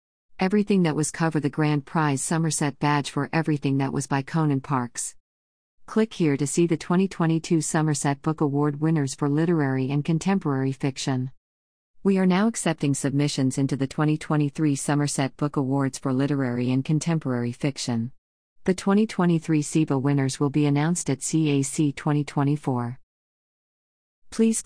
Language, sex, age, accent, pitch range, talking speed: English, female, 40-59, American, 135-160 Hz, 140 wpm